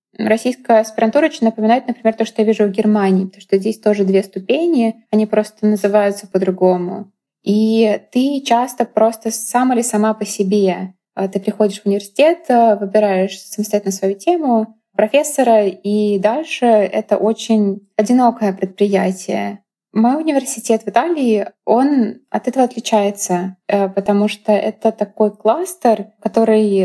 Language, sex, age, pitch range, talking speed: Russian, female, 20-39, 200-225 Hz, 130 wpm